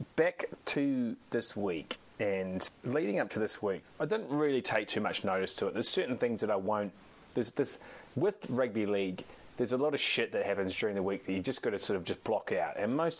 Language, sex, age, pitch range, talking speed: English, male, 30-49, 100-130 Hz, 235 wpm